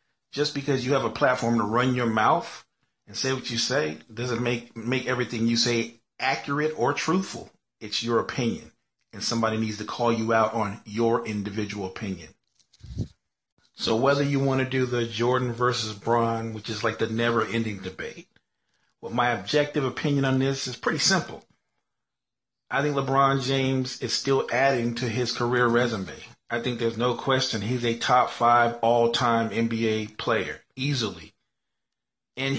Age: 40-59